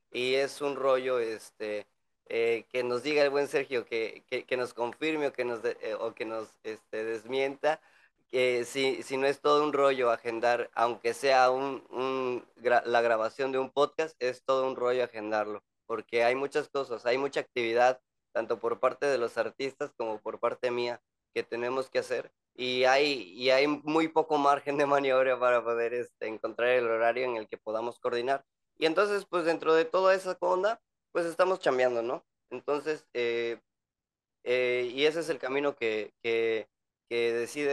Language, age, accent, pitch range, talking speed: Spanish, 20-39, Mexican, 115-145 Hz, 185 wpm